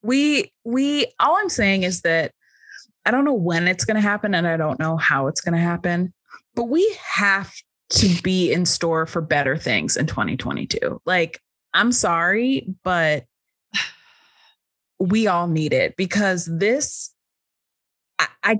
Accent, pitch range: American, 170-235 Hz